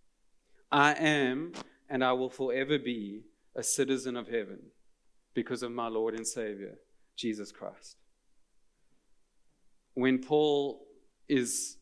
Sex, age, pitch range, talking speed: male, 30-49, 120-145 Hz, 110 wpm